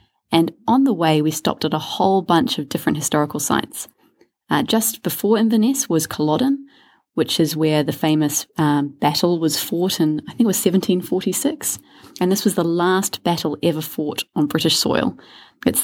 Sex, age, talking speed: female, 20-39, 180 wpm